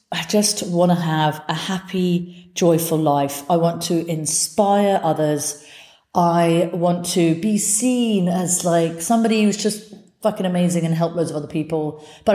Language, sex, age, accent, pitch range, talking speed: English, female, 30-49, British, 155-190 Hz, 160 wpm